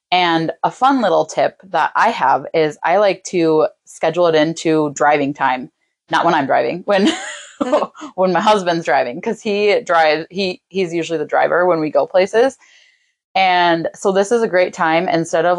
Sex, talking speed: female, 180 wpm